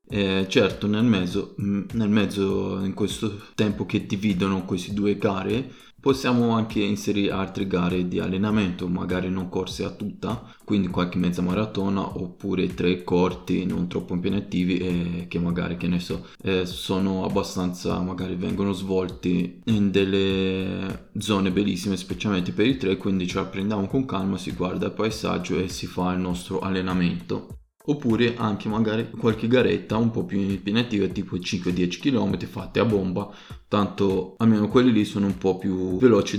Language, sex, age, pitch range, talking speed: Italian, male, 20-39, 90-105 Hz, 160 wpm